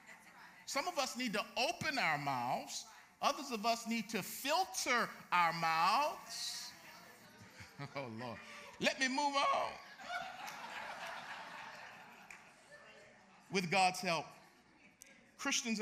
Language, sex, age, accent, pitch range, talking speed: English, male, 50-69, American, 195-280 Hz, 100 wpm